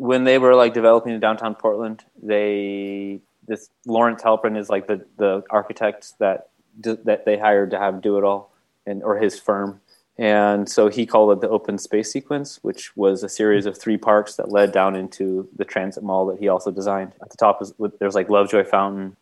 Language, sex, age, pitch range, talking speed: English, male, 20-39, 95-115 Hz, 205 wpm